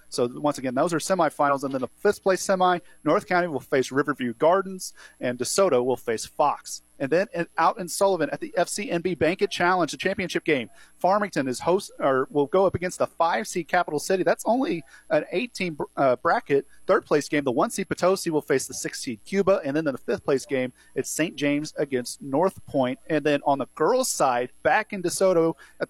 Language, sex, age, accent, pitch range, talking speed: English, male, 40-59, American, 145-185 Hz, 195 wpm